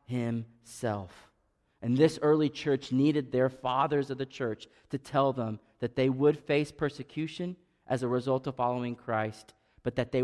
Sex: male